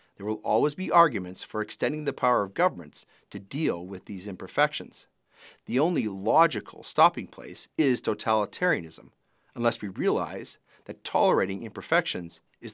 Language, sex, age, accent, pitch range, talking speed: English, male, 50-69, American, 105-135 Hz, 140 wpm